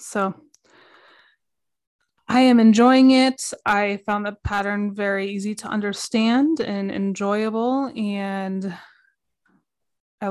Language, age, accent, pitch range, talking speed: English, 20-39, American, 195-235 Hz, 100 wpm